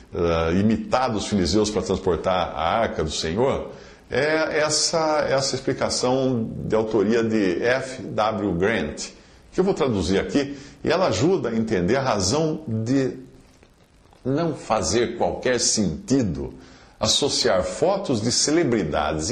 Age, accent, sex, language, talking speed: 50-69, Brazilian, male, English, 125 wpm